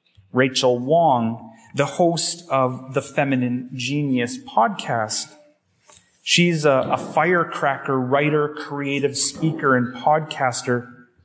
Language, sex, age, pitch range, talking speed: English, male, 30-49, 125-155 Hz, 95 wpm